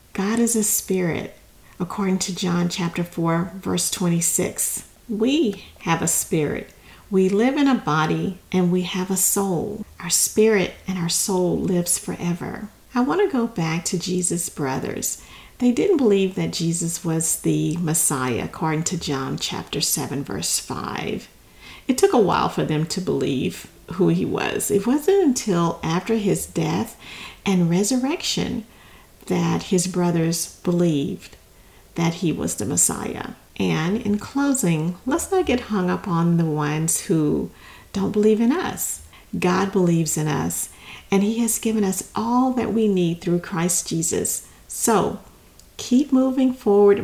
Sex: female